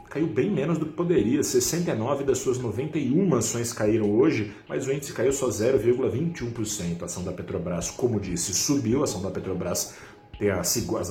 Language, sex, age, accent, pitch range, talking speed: Portuguese, male, 40-59, Brazilian, 100-130 Hz, 180 wpm